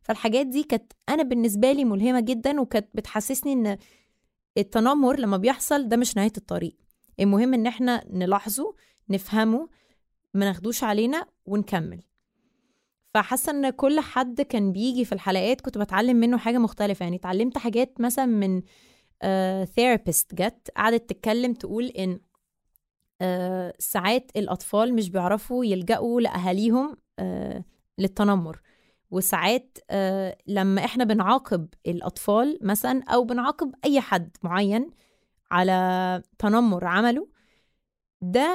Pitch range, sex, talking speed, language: 195-250 Hz, female, 115 wpm, Arabic